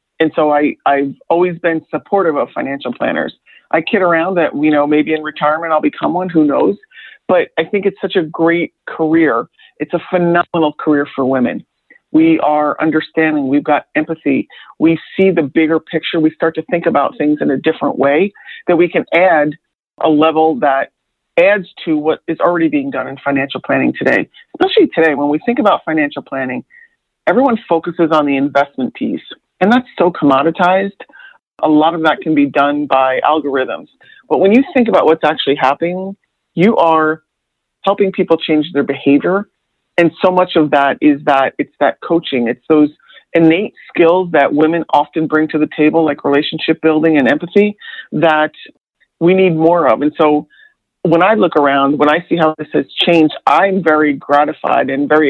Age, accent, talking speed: 40-59, American, 180 wpm